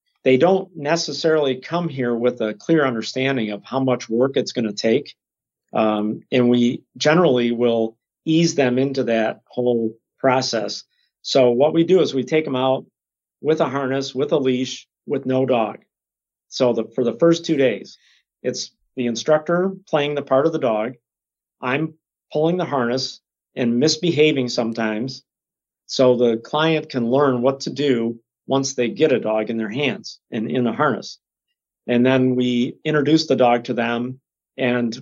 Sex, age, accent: male, 50-69, American